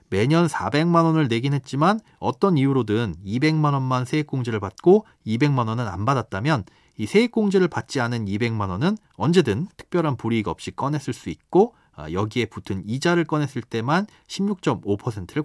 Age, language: 40-59, Korean